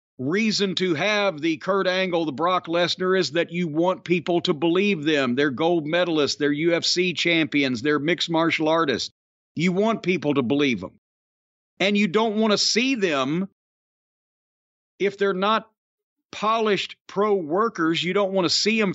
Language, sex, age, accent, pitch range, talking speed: English, male, 50-69, American, 165-200 Hz, 165 wpm